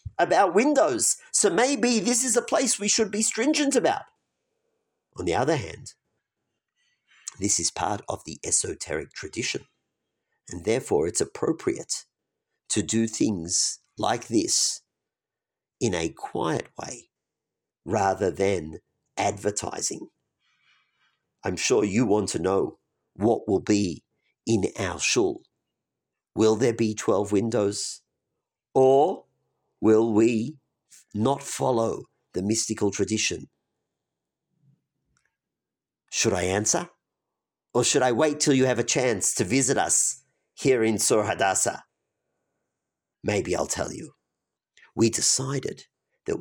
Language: English